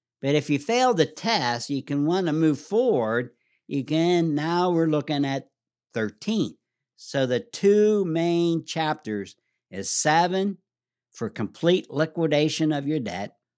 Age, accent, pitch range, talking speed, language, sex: 60-79, American, 120-160 Hz, 135 wpm, English, male